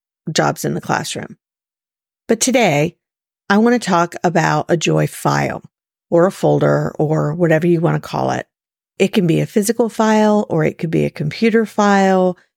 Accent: American